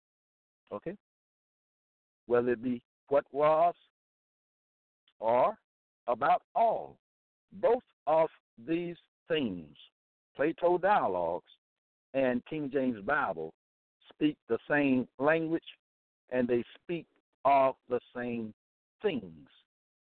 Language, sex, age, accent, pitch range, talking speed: English, male, 60-79, American, 95-150 Hz, 90 wpm